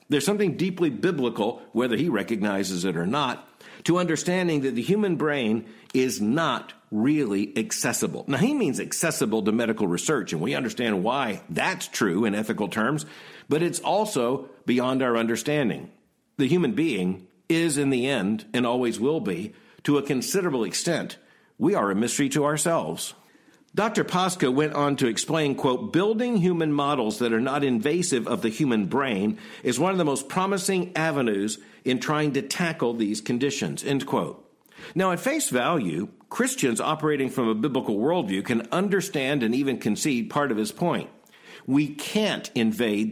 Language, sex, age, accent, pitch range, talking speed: English, male, 50-69, American, 120-170 Hz, 165 wpm